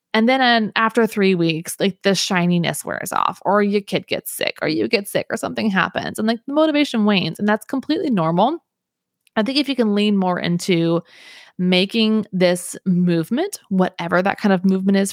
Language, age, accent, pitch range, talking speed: English, 20-39, American, 175-230 Hz, 195 wpm